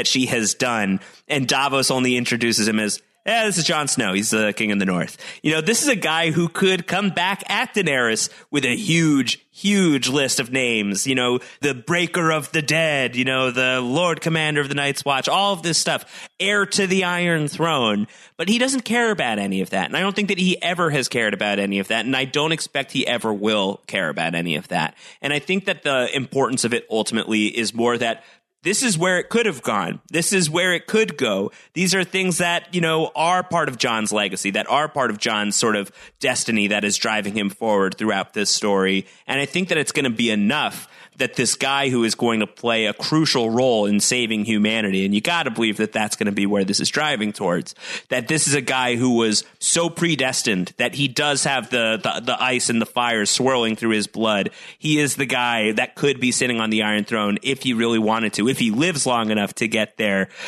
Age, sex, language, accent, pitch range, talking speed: 30-49, male, English, American, 110-155 Hz, 235 wpm